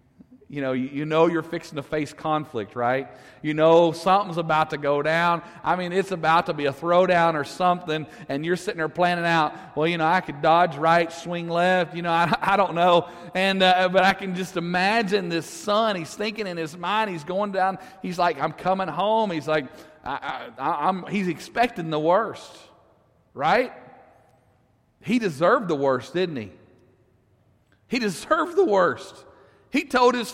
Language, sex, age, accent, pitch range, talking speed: English, male, 40-59, American, 160-255 Hz, 185 wpm